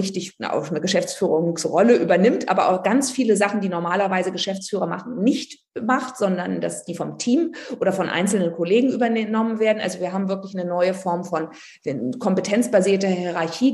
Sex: female